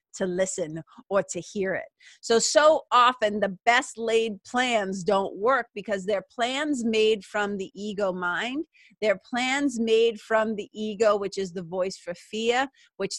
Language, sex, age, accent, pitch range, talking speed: English, female, 30-49, American, 205-260 Hz, 165 wpm